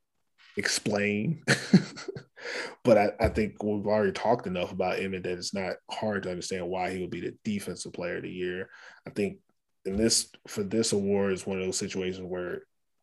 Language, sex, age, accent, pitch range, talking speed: English, male, 20-39, American, 90-105 Hz, 190 wpm